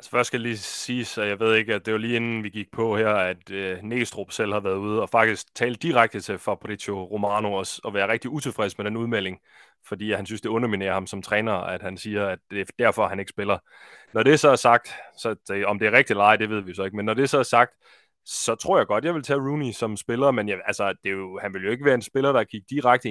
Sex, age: male, 20-39